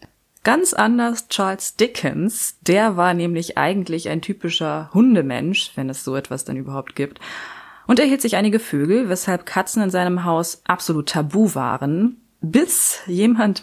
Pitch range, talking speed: 155-210 Hz, 145 wpm